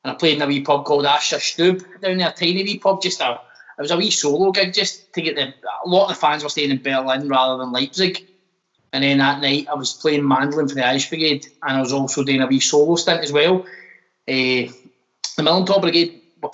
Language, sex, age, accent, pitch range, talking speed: English, male, 20-39, British, 135-165 Hz, 245 wpm